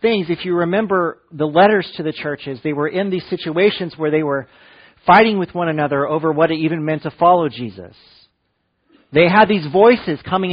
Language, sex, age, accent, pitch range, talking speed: English, male, 40-59, American, 140-195 Hz, 190 wpm